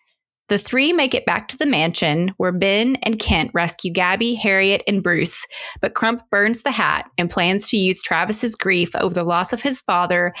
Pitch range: 180-235 Hz